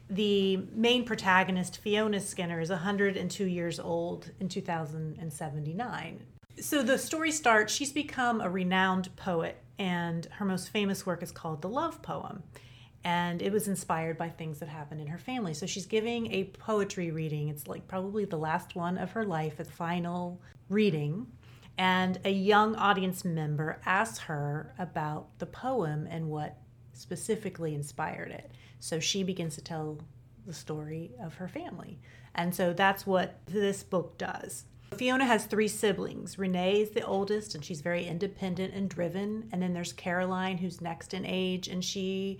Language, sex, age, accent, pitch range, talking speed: English, female, 30-49, American, 160-200 Hz, 165 wpm